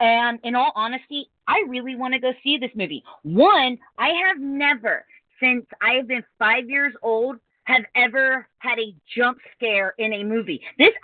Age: 30-49